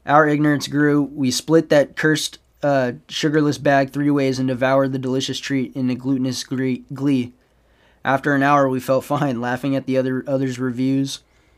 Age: 20-39